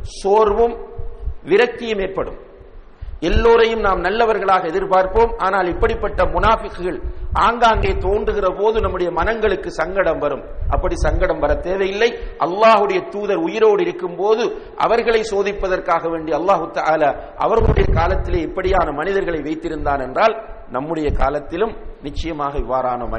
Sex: male